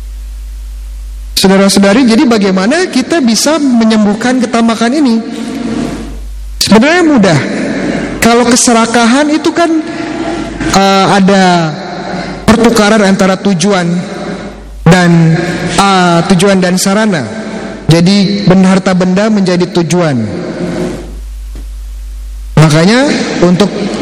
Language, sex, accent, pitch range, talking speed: Indonesian, male, native, 165-220 Hz, 75 wpm